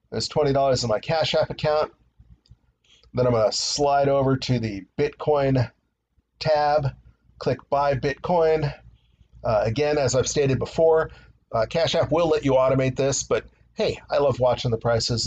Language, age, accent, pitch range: English, 40-59, American, 115-145 Hz